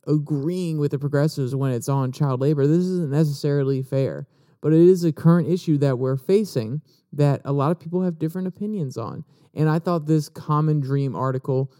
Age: 30-49